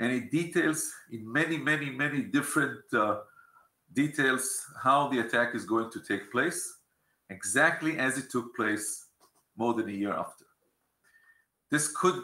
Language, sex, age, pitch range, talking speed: English, male, 50-69, 120-165 Hz, 145 wpm